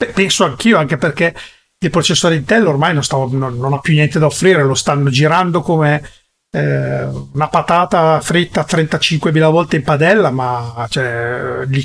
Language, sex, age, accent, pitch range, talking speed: Italian, male, 40-59, native, 135-175 Hz, 150 wpm